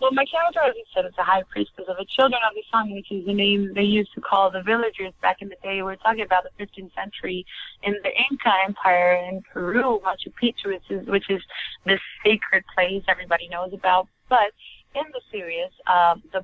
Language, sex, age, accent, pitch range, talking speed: English, female, 30-49, American, 180-210 Hz, 215 wpm